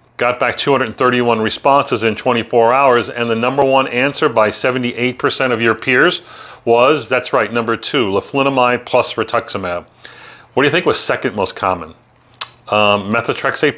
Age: 40-59